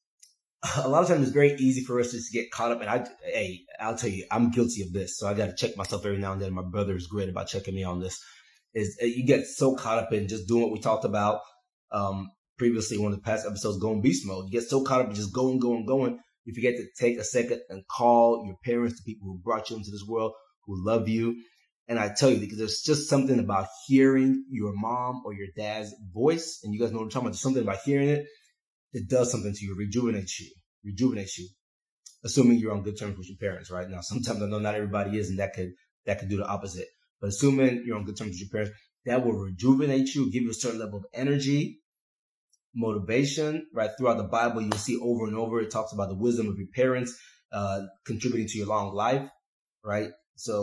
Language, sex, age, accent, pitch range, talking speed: English, male, 20-39, American, 100-125 Hz, 245 wpm